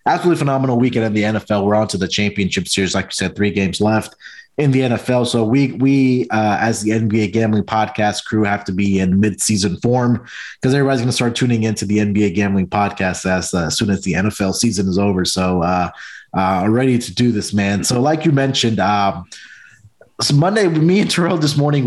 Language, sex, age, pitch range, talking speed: English, male, 20-39, 105-130 Hz, 215 wpm